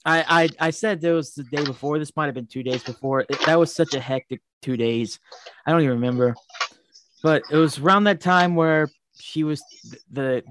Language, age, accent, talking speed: English, 20-39, American, 225 wpm